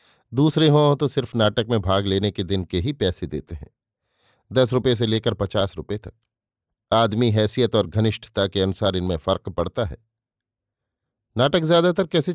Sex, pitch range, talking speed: male, 100-130 Hz, 170 wpm